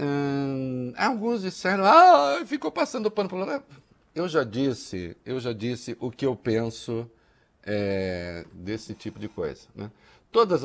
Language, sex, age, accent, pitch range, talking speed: Portuguese, male, 60-79, Brazilian, 105-140 Hz, 140 wpm